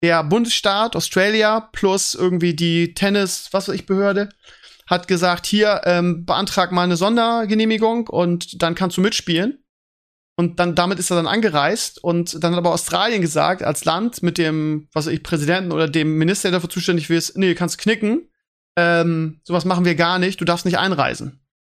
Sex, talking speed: male, 185 wpm